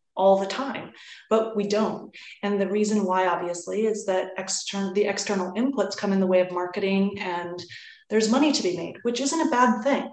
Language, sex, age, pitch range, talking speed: English, female, 30-49, 185-220 Hz, 200 wpm